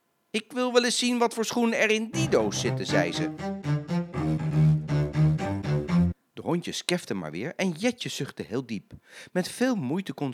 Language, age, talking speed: Dutch, 40-59, 170 wpm